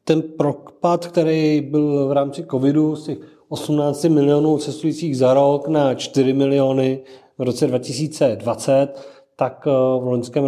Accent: native